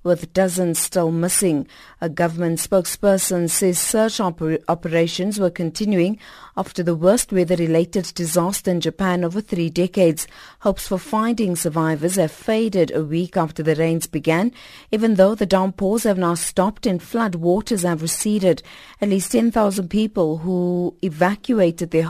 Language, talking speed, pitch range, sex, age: English, 140 wpm, 170-200 Hz, female, 50-69